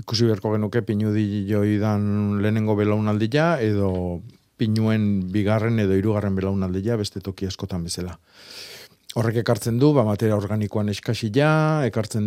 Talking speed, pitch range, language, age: 135 wpm, 100-115 Hz, Spanish, 50-69